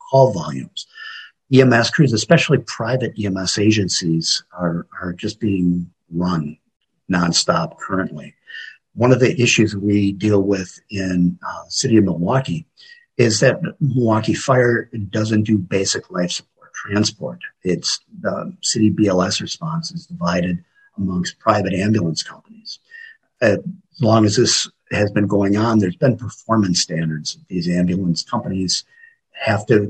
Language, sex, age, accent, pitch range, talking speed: English, male, 50-69, American, 90-120 Hz, 135 wpm